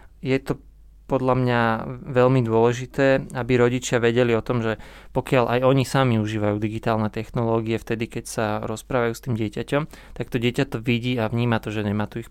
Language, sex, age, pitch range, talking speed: Slovak, male, 20-39, 110-125 Hz, 185 wpm